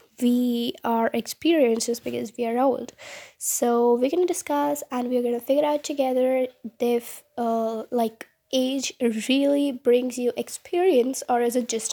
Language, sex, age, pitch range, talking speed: English, female, 10-29, 235-275 Hz, 160 wpm